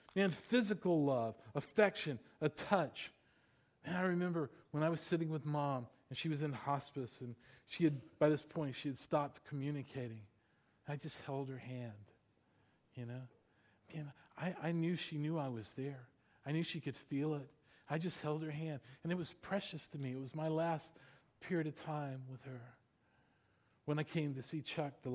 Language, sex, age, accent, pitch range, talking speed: English, male, 40-59, American, 130-165 Hz, 190 wpm